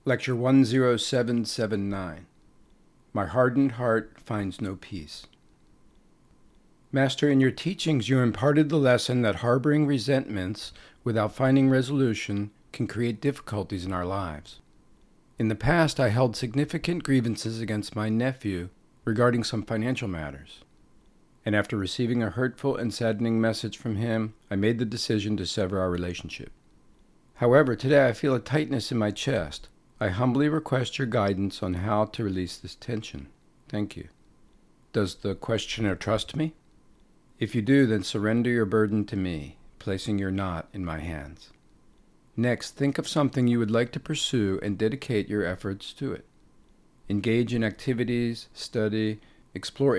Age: 50-69